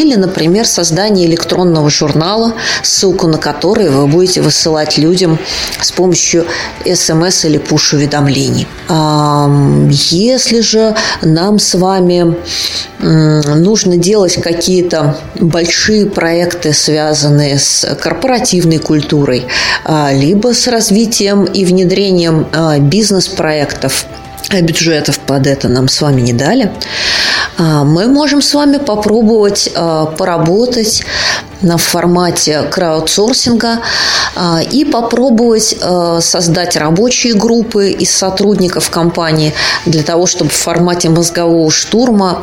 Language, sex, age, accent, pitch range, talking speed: Russian, female, 20-39, native, 155-200 Hz, 100 wpm